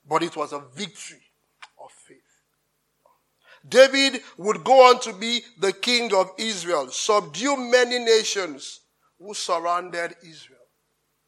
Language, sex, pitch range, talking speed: English, male, 165-220 Hz, 120 wpm